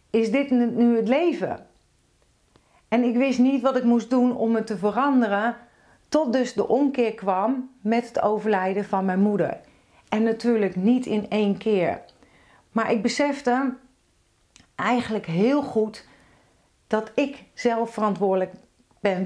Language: Dutch